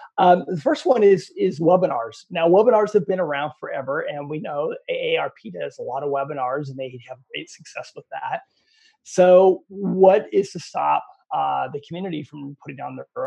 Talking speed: 185 wpm